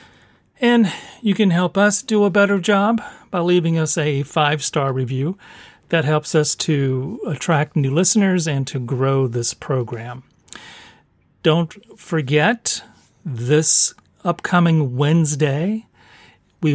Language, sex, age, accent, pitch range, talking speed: English, male, 40-59, American, 135-175 Hz, 120 wpm